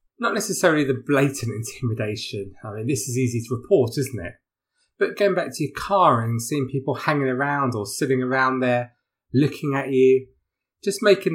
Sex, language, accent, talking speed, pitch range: male, English, British, 180 wpm, 120-160 Hz